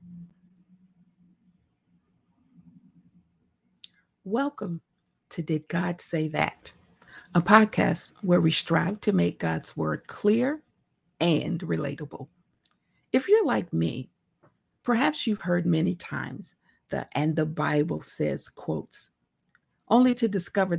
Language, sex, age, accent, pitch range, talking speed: English, female, 50-69, American, 155-200 Hz, 105 wpm